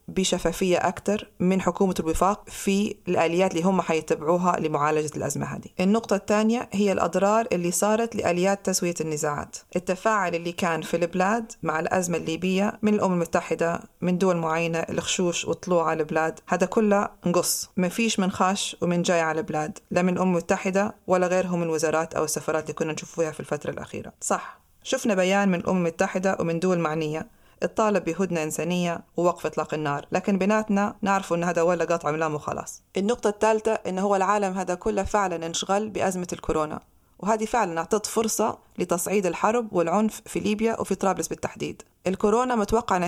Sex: female